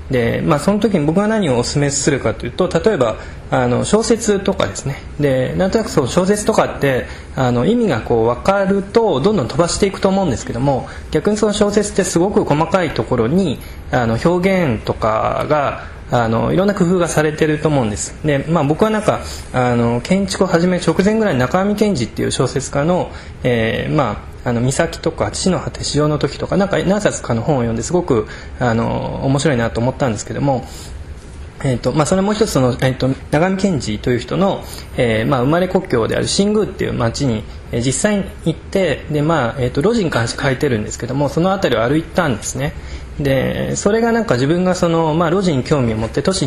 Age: 20-39